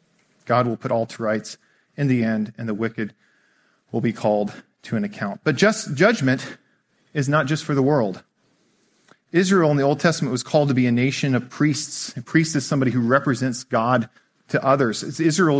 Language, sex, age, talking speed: English, male, 40-59, 190 wpm